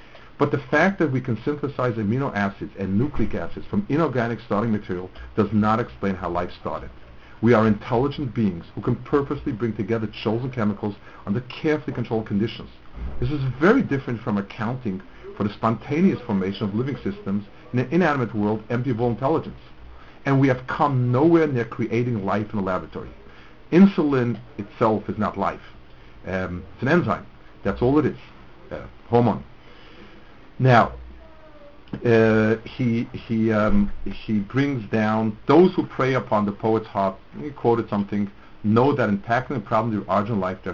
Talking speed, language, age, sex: 165 wpm, English, 50-69, male